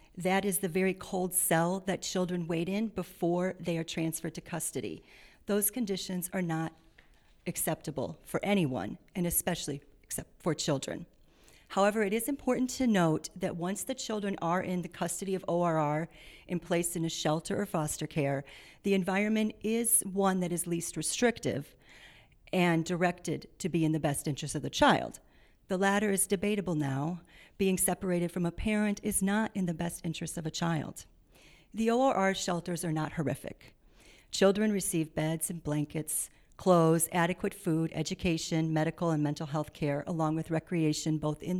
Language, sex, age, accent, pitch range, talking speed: English, female, 40-59, American, 160-195 Hz, 165 wpm